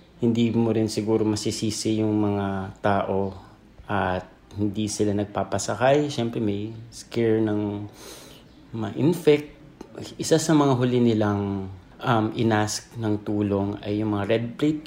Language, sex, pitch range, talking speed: English, male, 100-120 Hz, 125 wpm